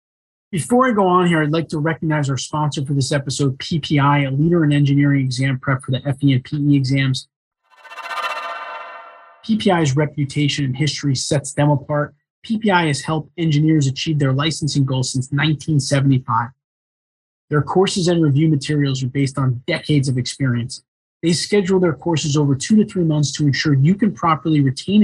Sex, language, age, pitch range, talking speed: male, English, 20-39, 140-175 Hz, 170 wpm